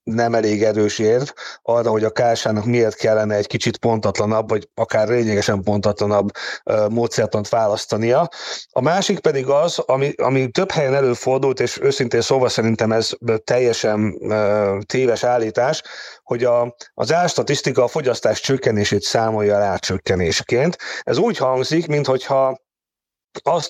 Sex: male